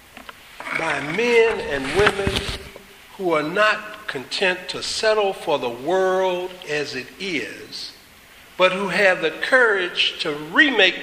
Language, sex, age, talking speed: English, male, 60-79, 125 wpm